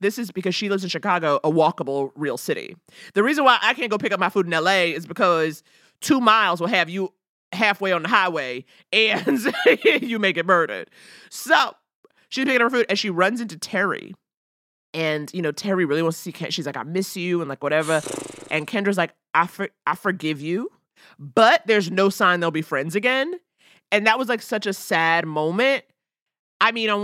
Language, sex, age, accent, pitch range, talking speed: English, male, 30-49, American, 155-235 Hz, 205 wpm